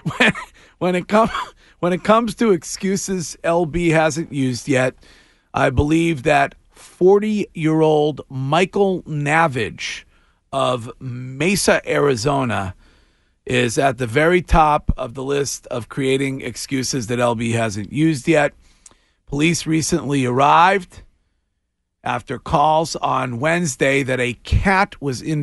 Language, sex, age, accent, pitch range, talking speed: English, male, 40-59, American, 130-165 Hz, 125 wpm